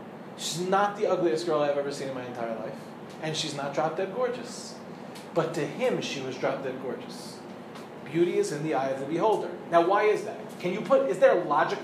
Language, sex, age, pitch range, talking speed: English, male, 30-49, 175-230 Hz, 215 wpm